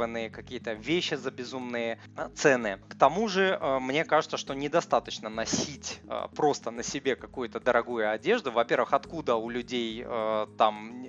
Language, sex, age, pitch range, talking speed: Russian, male, 20-39, 120-155 Hz, 130 wpm